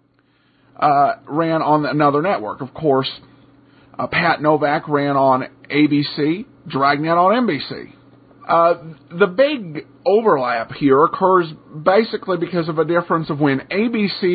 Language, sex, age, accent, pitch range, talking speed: English, male, 50-69, American, 140-185 Hz, 125 wpm